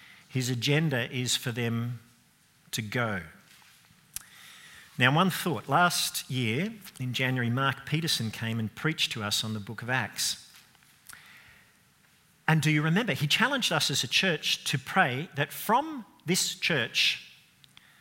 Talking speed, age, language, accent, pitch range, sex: 140 wpm, 50-69, English, Australian, 125-175 Hz, male